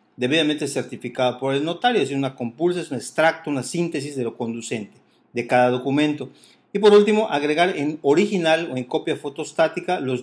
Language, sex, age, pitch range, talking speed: English, male, 40-59, 125-165 Hz, 180 wpm